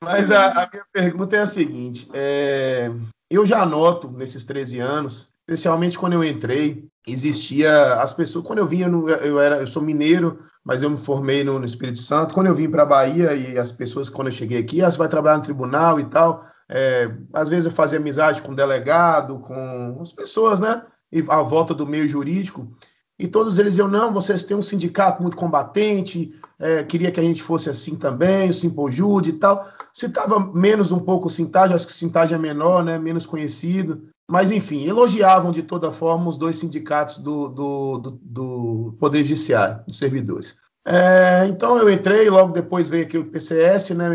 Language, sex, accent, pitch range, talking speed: Portuguese, male, Brazilian, 140-180 Hz, 195 wpm